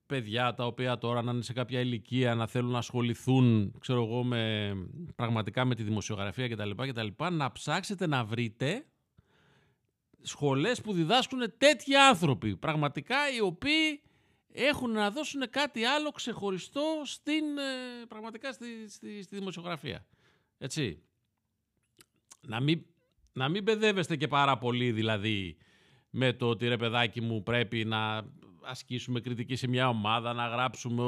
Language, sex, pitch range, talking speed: Greek, male, 120-165 Hz, 140 wpm